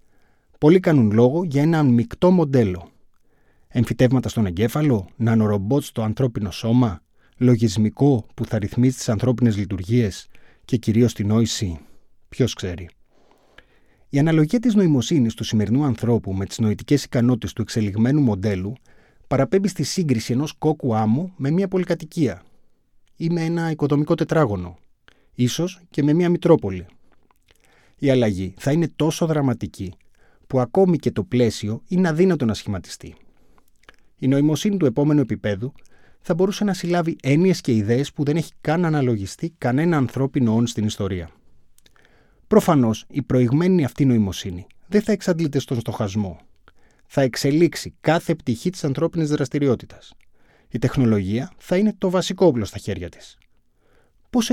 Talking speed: 140 wpm